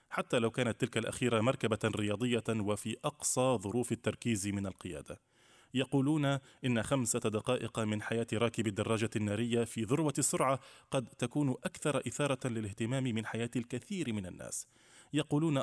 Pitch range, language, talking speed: 110-130 Hz, Arabic, 140 wpm